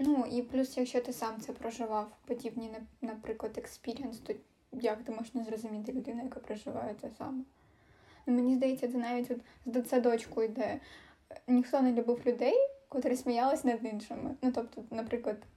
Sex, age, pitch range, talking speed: female, 10-29, 230-265 Hz, 165 wpm